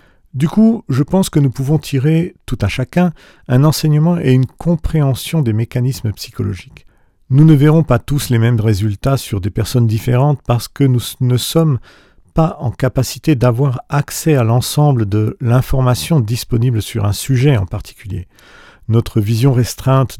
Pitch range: 105-140 Hz